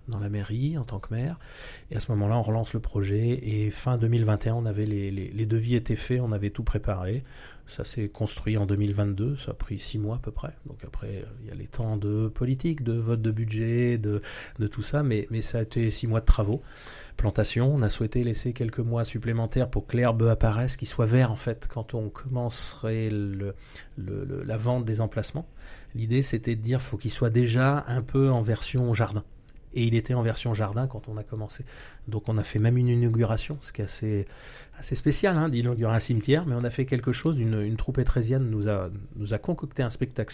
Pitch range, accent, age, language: 105-125 Hz, French, 30-49, French